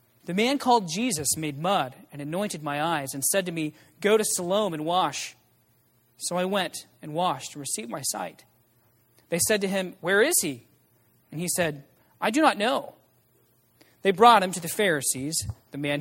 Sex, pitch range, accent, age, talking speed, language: male, 130-205 Hz, American, 30-49, 185 wpm, English